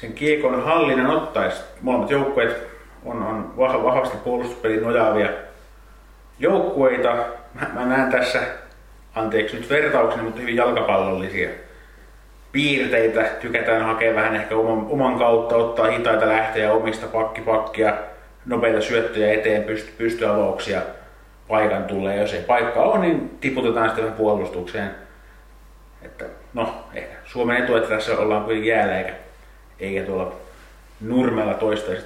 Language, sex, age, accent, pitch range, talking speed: Finnish, male, 30-49, native, 105-120 Hz, 120 wpm